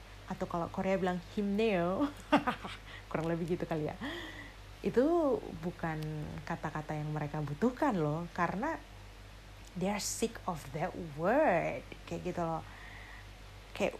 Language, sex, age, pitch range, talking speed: Indonesian, female, 30-49, 150-195 Hz, 120 wpm